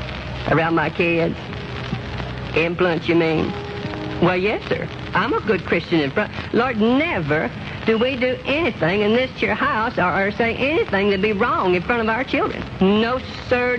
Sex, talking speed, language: female, 170 wpm, English